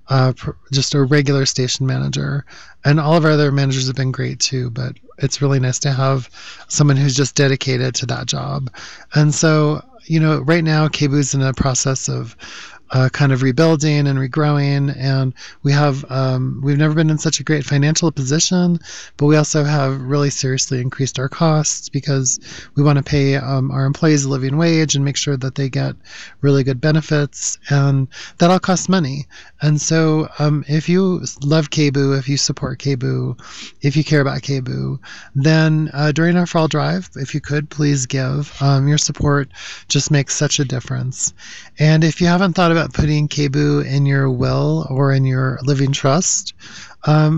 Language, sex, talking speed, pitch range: English, male, 185 wpm, 135-150 Hz